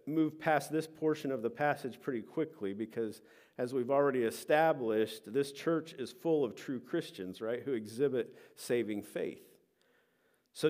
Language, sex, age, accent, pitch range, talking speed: English, male, 50-69, American, 120-160 Hz, 150 wpm